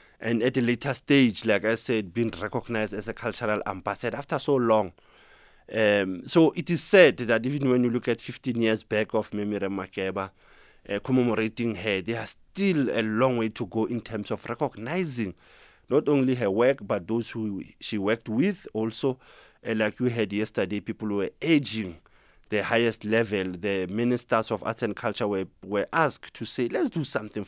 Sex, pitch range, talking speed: male, 100-120 Hz, 185 wpm